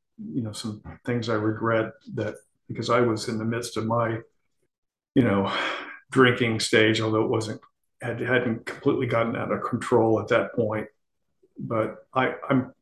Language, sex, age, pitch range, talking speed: English, male, 50-69, 115-130 Hz, 165 wpm